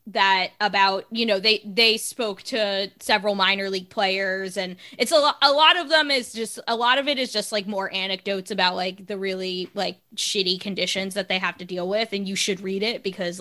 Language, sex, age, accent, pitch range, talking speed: English, female, 20-39, American, 190-230 Hz, 220 wpm